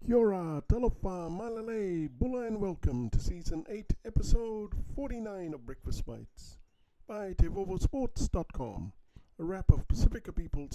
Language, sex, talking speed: English, male, 115 wpm